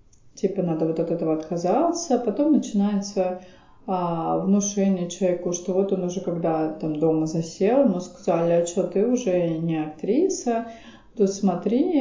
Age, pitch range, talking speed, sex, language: 30-49, 165-200 Hz, 145 wpm, female, Russian